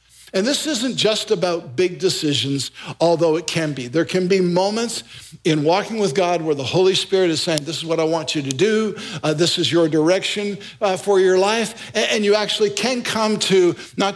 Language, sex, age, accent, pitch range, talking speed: English, male, 50-69, American, 160-205 Hz, 210 wpm